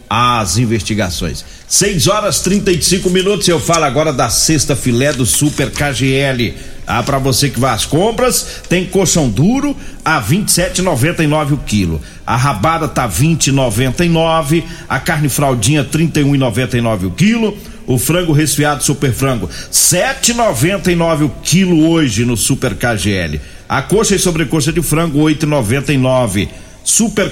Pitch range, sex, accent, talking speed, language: 130-180 Hz, male, Brazilian, 135 wpm, Portuguese